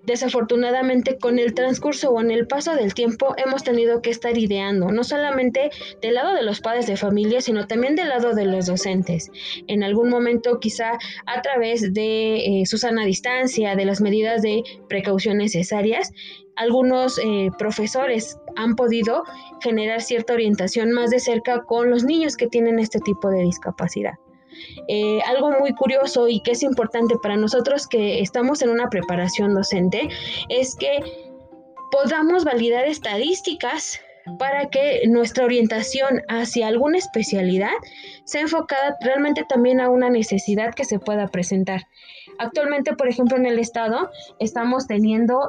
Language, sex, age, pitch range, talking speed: Spanish, female, 20-39, 210-255 Hz, 150 wpm